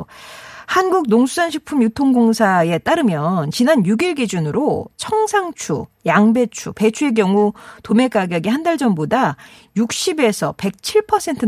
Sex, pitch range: female, 180-275 Hz